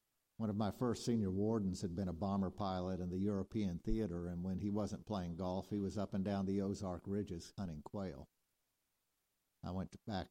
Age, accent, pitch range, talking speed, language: 50-69, American, 90-105 Hz, 200 wpm, English